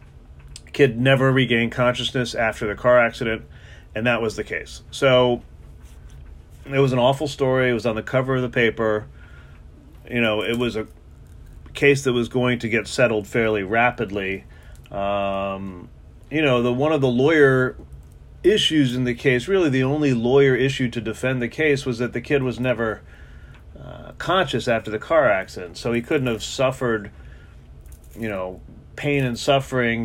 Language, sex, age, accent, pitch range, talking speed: English, male, 30-49, American, 100-125 Hz, 170 wpm